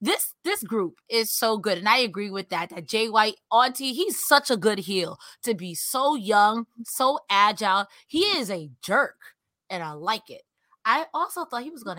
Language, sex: English, female